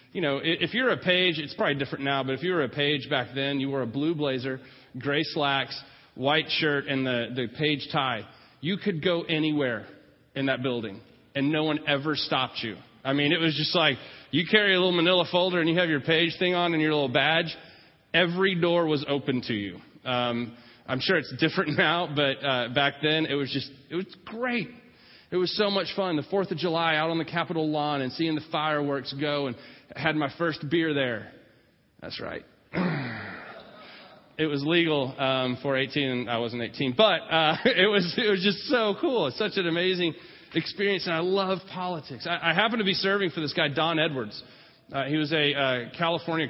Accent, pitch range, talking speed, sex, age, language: American, 135-170 Hz, 210 wpm, male, 30-49, English